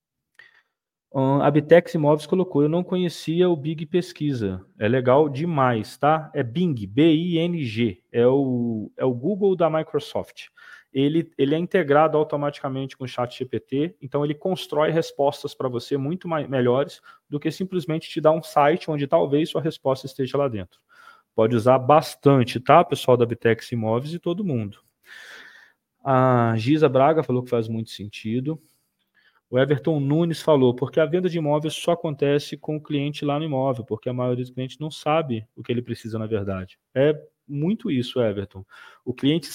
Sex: male